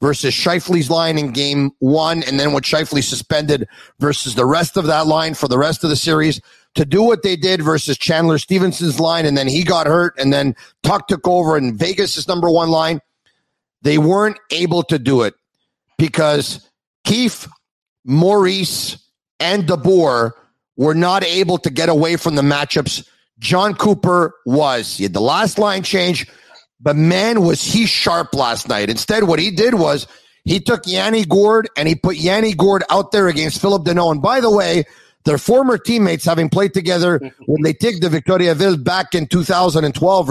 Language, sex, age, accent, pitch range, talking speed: English, male, 40-59, American, 150-195 Hz, 180 wpm